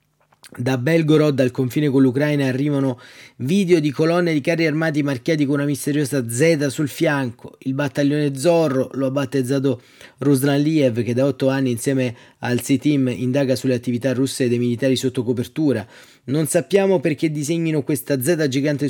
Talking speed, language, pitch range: 160 wpm, Italian, 125-145 Hz